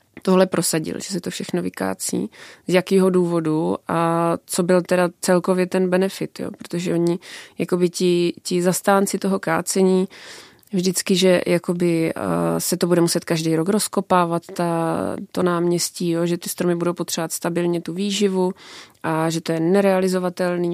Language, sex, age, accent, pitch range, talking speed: Czech, female, 20-39, native, 170-185 Hz, 155 wpm